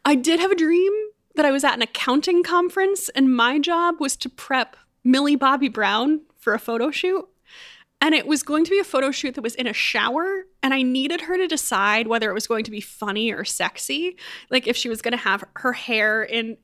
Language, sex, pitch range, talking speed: English, female, 215-270 Hz, 230 wpm